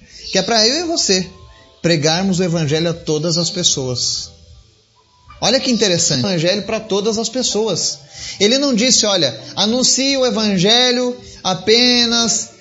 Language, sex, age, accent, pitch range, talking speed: Portuguese, male, 30-49, Brazilian, 155-245 Hz, 145 wpm